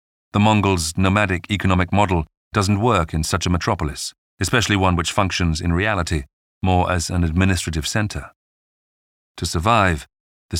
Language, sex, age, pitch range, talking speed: English, male, 40-59, 85-105 Hz, 140 wpm